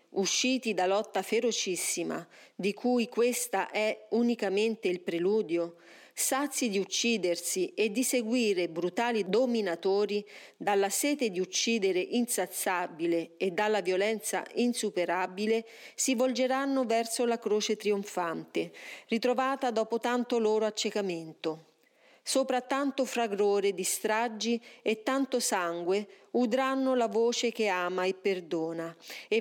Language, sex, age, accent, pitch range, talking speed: Italian, female, 40-59, native, 185-235 Hz, 110 wpm